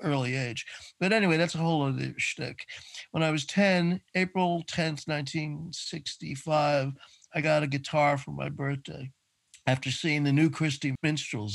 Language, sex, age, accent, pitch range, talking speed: English, male, 50-69, American, 135-155 Hz, 150 wpm